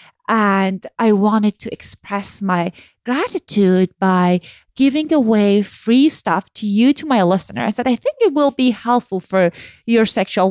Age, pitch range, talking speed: 30-49, 190-245 Hz, 160 wpm